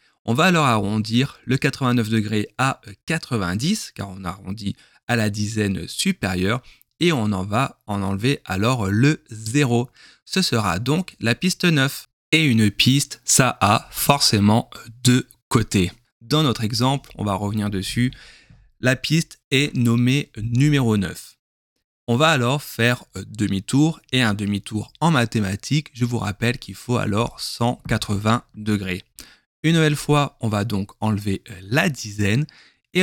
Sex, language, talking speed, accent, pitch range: male, French, 145 wpm, French, 105-140 Hz